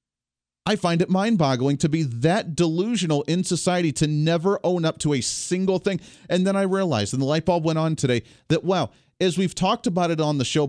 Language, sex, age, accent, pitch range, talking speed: English, male, 40-59, American, 145-195 Hz, 220 wpm